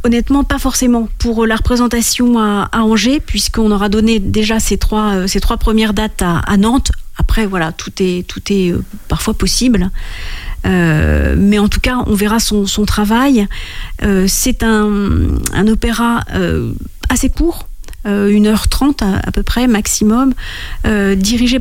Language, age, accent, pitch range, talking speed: French, 40-59, French, 190-235 Hz, 155 wpm